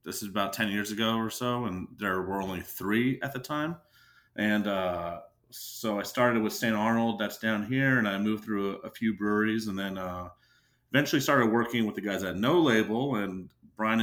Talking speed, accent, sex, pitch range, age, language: 210 wpm, American, male, 95-120 Hz, 30-49, English